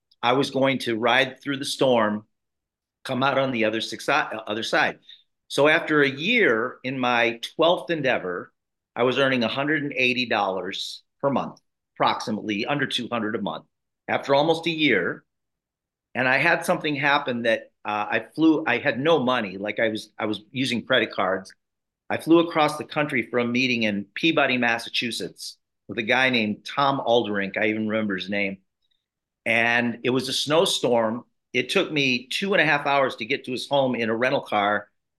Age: 40-59